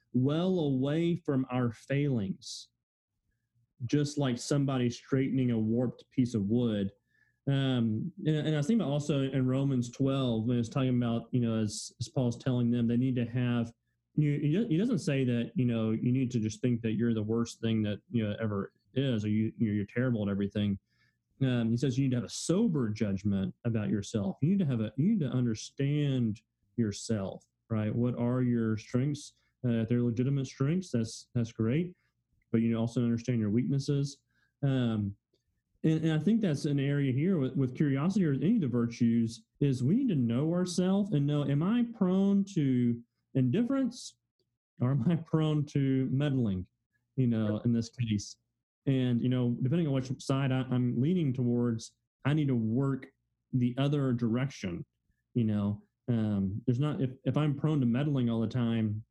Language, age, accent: English, 30-49, American